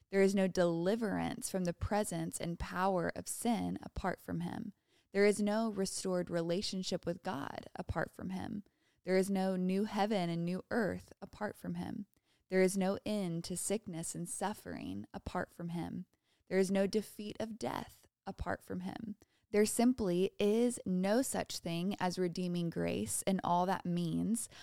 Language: English